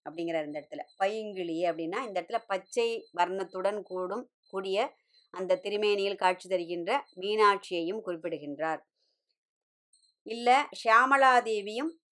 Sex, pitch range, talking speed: male, 195-260 Hz, 95 wpm